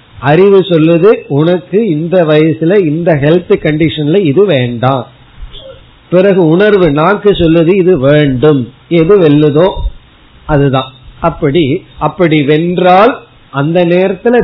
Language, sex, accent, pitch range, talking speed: Tamil, male, native, 145-185 Hz, 60 wpm